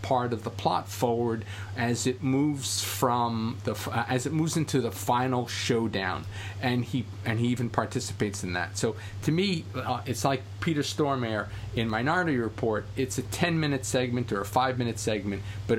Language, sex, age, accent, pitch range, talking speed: English, male, 40-59, American, 100-130 Hz, 180 wpm